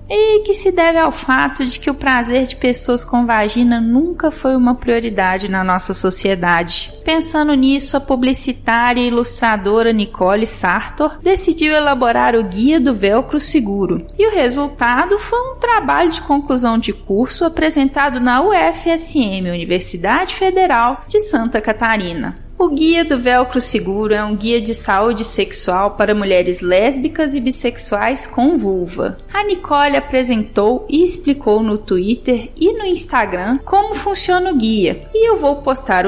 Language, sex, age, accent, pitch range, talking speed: Portuguese, female, 10-29, Brazilian, 215-310 Hz, 150 wpm